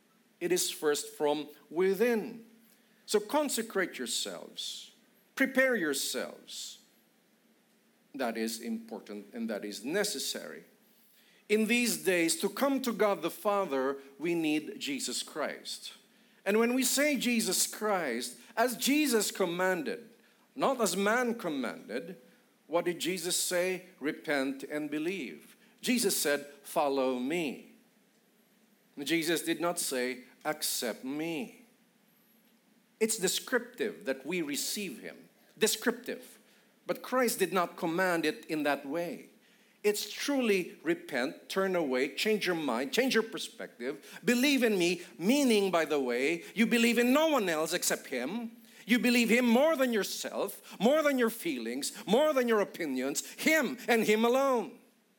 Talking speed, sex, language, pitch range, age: 130 wpm, male, English, 180-235 Hz, 50-69